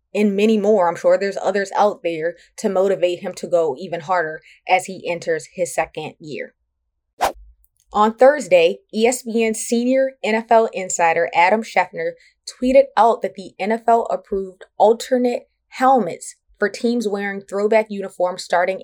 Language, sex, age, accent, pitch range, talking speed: English, female, 20-39, American, 175-225 Hz, 140 wpm